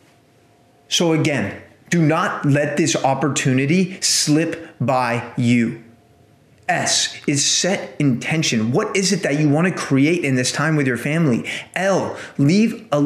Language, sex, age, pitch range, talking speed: English, male, 30-49, 145-205 Hz, 140 wpm